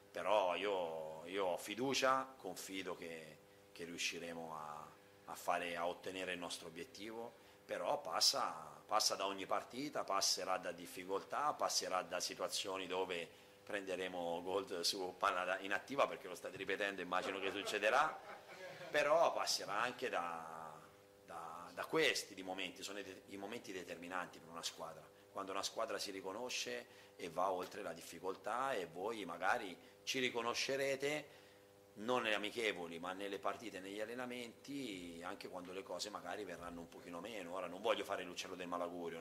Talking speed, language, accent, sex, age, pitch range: 155 wpm, Italian, native, male, 30-49, 90-100 Hz